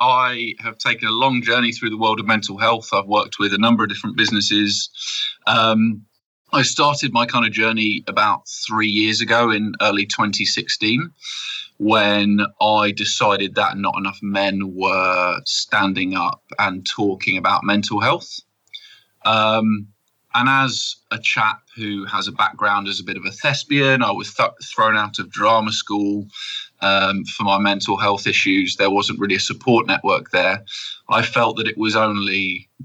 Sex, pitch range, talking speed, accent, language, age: male, 100-115 Hz, 165 wpm, British, English, 20-39